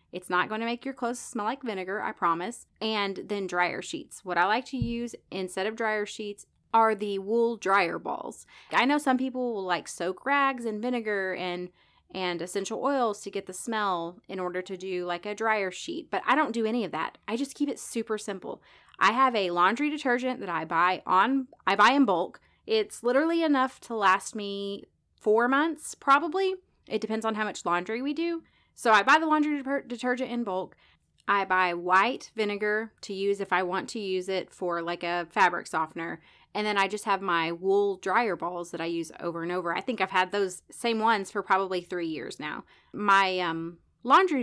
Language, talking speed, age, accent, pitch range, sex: English, 210 wpm, 30-49, American, 180-235 Hz, female